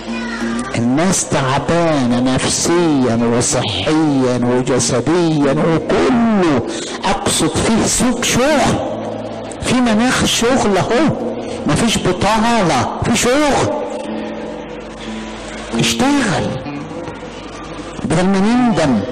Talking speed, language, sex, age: 70 wpm, English, male, 60-79